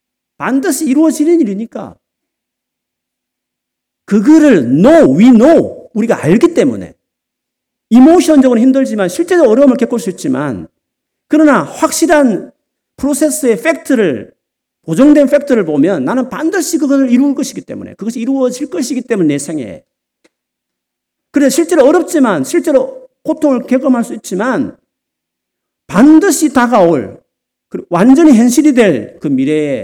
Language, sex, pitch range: Korean, male, 185-290 Hz